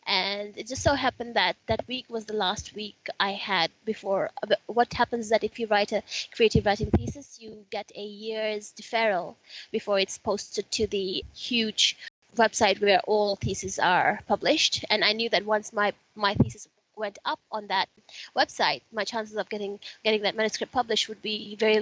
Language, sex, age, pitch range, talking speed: English, female, 20-39, 205-235 Hz, 185 wpm